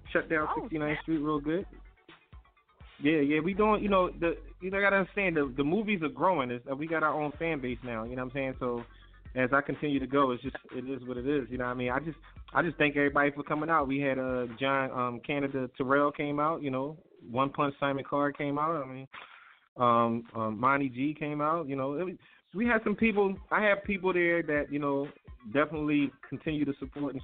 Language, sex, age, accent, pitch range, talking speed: English, male, 20-39, American, 135-165 Hz, 240 wpm